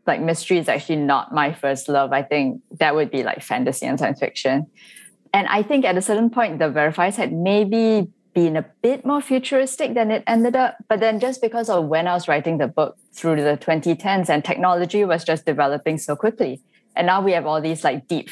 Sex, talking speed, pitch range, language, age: female, 220 wpm, 145-195 Hz, English, 10-29